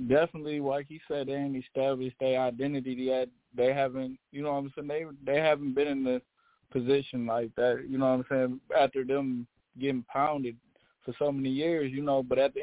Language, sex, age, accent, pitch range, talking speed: English, male, 20-39, American, 125-140 Hz, 210 wpm